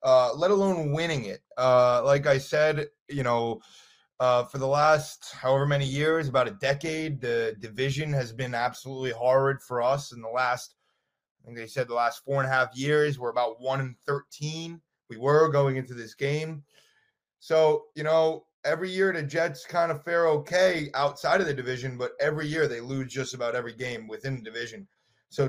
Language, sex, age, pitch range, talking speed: English, male, 30-49, 125-150 Hz, 190 wpm